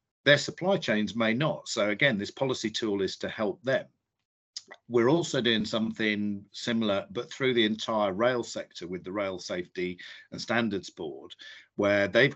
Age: 50-69